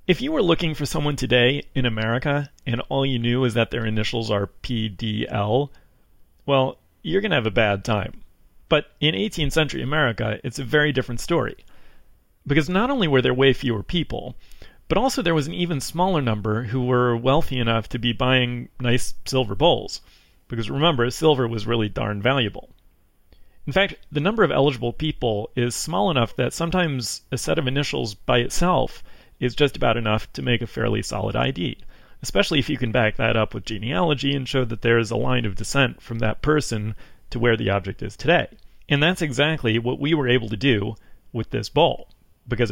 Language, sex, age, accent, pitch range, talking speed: English, male, 40-59, American, 110-145 Hz, 190 wpm